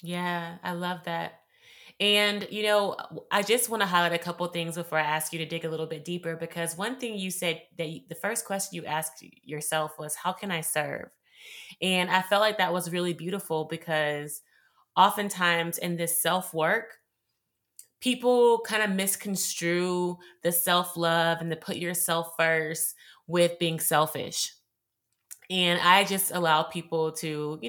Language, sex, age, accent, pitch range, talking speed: English, female, 20-39, American, 160-185 Hz, 165 wpm